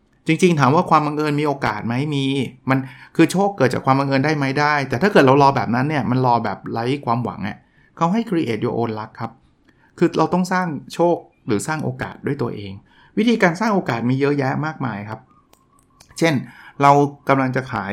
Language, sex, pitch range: Thai, male, 125-155 Hz